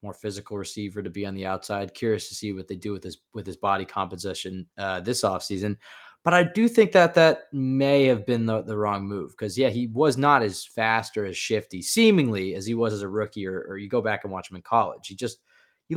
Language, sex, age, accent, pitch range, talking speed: English, male, 20-39, American, 100-125 Hz, 250 wpm